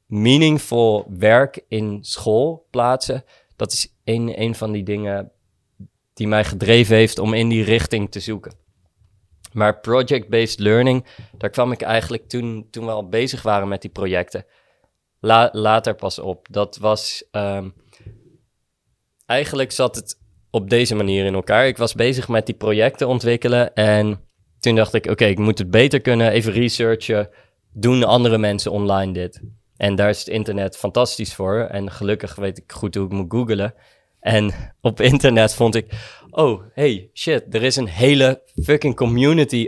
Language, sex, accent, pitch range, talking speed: English, male, Dutch, 105-125 Hz, 165 wpm